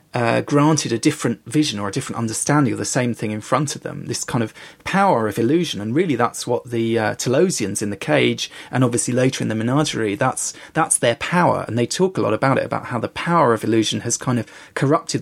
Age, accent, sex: 30-49, British, male